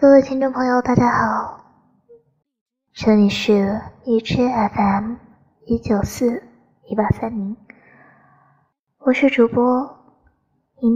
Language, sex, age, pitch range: Chinese, male, 20-39, 205-255 Hz